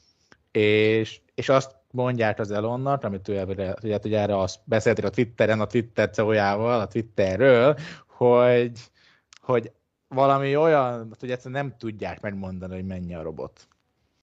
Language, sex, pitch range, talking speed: Hungarian, male, 100-120 Hz, 130 wpm